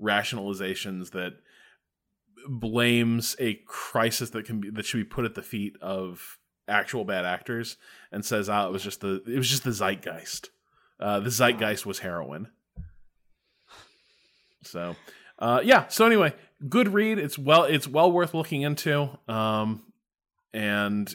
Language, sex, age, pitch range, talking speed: English, male, 20-39, 100-130 Hz, 145 wpm